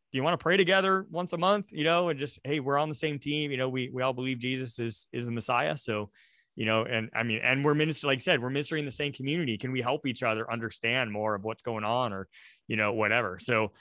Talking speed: 280 wpm